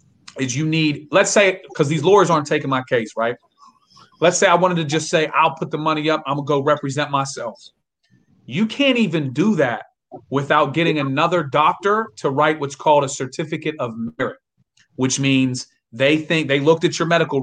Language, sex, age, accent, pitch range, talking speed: English, male, 30-49, American, 140-180 Hz, 195 wpm